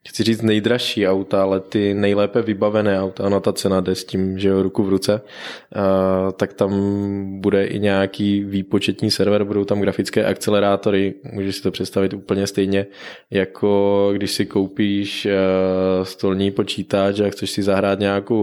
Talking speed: 155 wpm